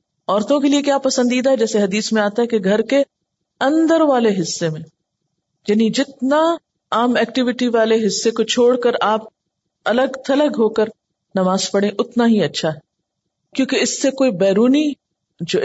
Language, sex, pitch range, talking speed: Urdu, female, 185-235 Hz, 170 wpm